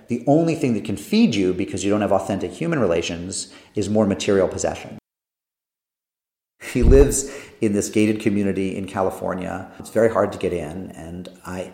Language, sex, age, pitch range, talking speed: English, male, 40-59, 90-105 Hz, 175 wpm